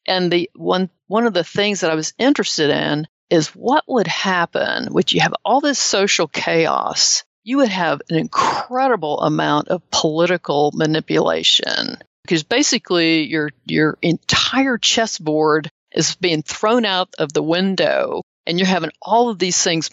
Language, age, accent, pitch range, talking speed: English, 50-69, American, 160-200 Hz, 155 wpm